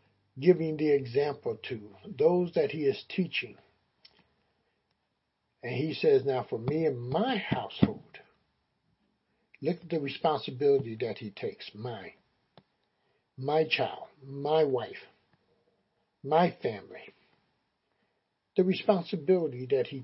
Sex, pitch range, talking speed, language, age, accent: male, 150-210 Hz, 110 wpm, English, 60-79, American